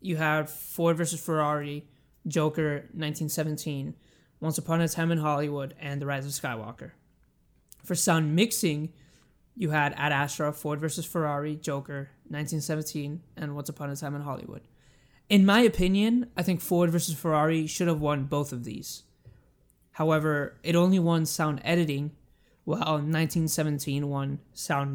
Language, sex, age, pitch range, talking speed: English, male, 20-39, 145-165 Hz, 145 wpm